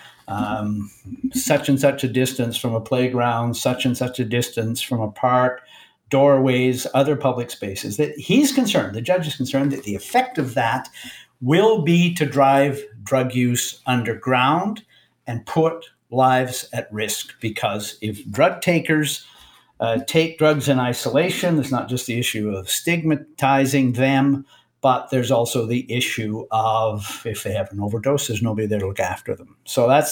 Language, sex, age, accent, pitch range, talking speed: English, male, 50-69, American, 125-170 Hz, 165 wpm